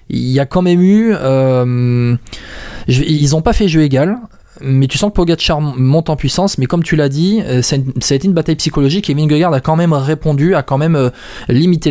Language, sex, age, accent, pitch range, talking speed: French, male, 20-39, French, 125-155 Hz, 230 wpm